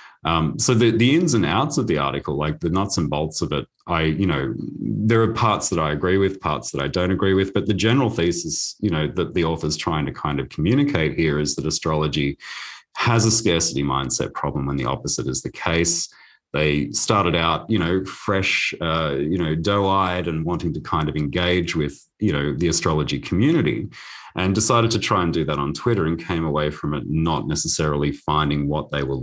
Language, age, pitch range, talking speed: English, 30-49, 75-105 Hz, 215 wpm